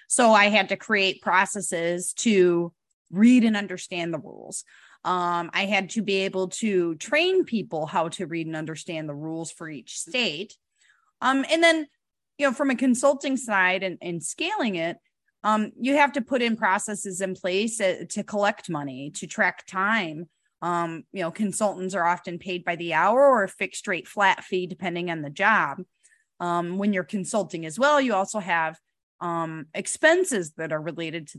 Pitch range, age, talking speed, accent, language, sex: 170-215 Hz, 30-49, 180 wpm, American, English, female